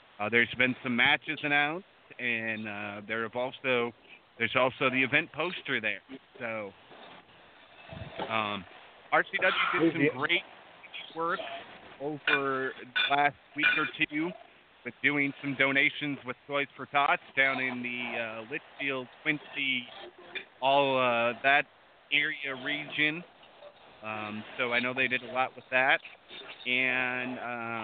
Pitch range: 120-150 Hz